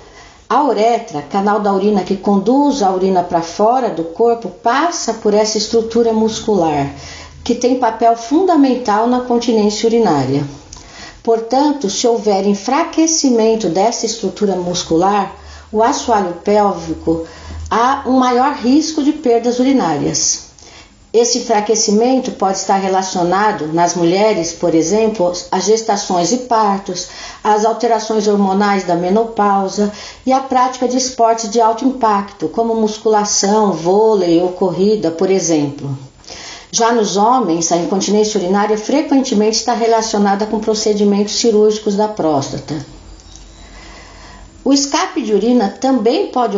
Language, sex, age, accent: Portuguese, female, 50-69, Brazilian